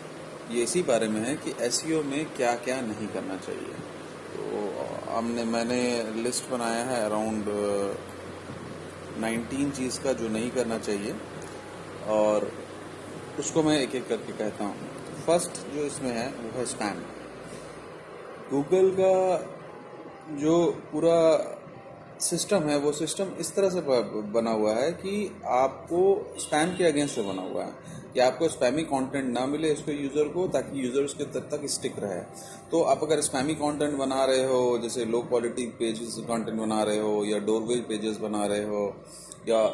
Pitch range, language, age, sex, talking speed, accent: 110-150 Hz, Hindi, 30-49, male, 155 wpm, native